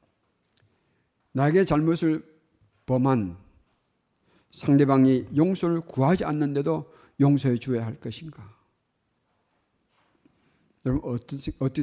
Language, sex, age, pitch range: Korean, male, 50-69, 120-165 Hz